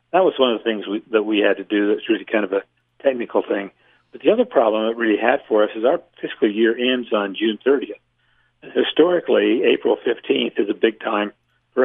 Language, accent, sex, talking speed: English, American, male, 225 wpm